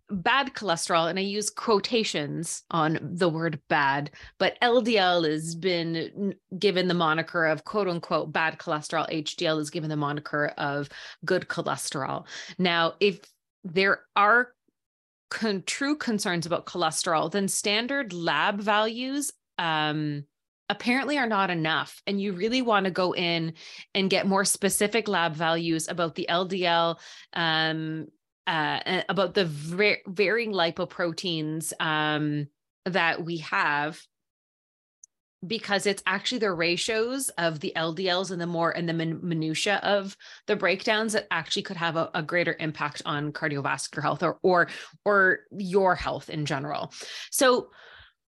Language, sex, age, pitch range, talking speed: English, female, 30-49, 160-200 Hz, 140 wpm